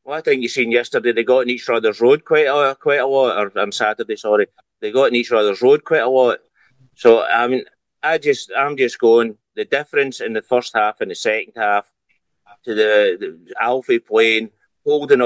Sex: male